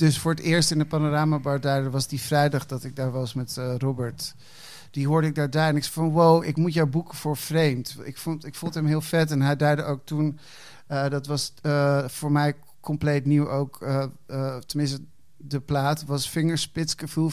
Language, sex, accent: Dutch, male, Dutch